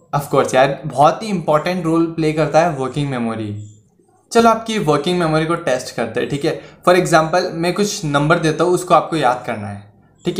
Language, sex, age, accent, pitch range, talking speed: Hindi, male, 20-39, native, 150-195 Hz, 200 wpm